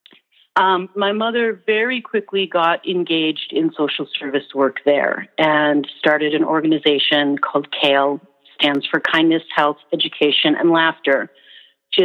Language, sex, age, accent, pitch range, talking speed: English, female, 40-59, American, 145-180 Hz, 130 wpm